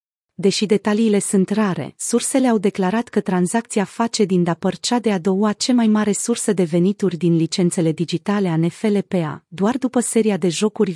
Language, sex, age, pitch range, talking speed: Romanian, female, 30-49, 180-215 Hz, 170 wpm